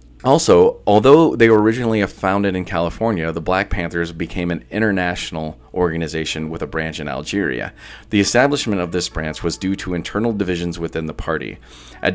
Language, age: English, 30-49